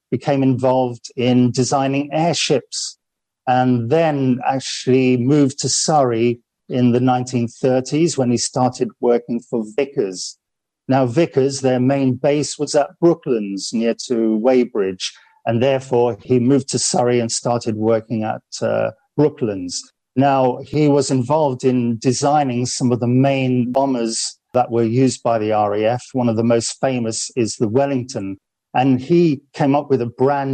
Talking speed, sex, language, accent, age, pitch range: 145 wpm, male, English, British, 50-69, 120-140 Hz